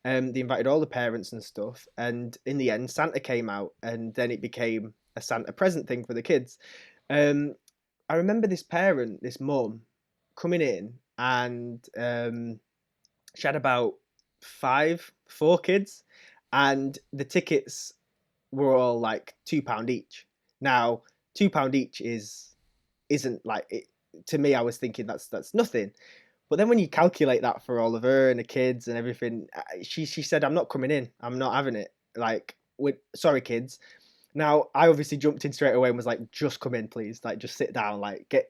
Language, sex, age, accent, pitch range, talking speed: English, male, 20-39, British, 120-150 Hz, 180 wpm